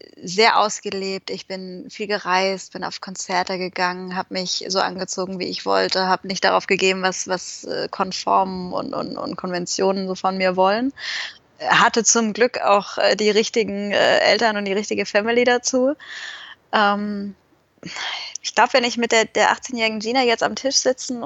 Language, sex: German, female